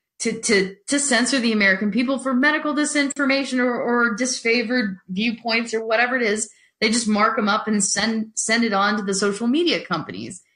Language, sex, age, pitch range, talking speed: English, female, 30-49, 185-240 Hz, 190 wpm